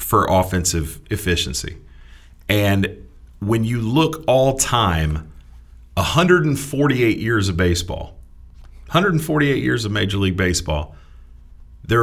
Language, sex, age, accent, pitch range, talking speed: English, male, 40-59, American, 80-110 Hz, 100 wpm